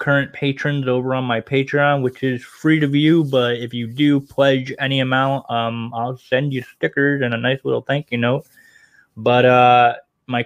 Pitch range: 120-150 Hz